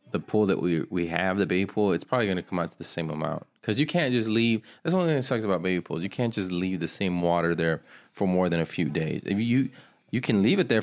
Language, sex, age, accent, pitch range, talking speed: English, male, 30-49, American, 90-115 Hz, 320 wpm